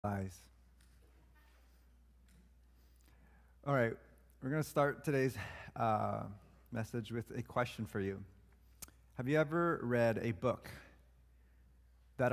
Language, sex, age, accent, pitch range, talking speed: English, male, 30-49, American, 95-135 Hz, 100 wpm